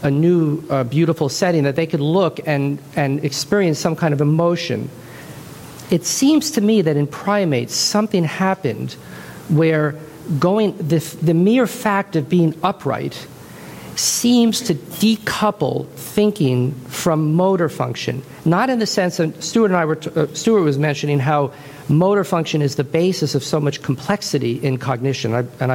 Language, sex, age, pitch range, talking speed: English, male, 50-69, 145-185 Hz, 160 wpm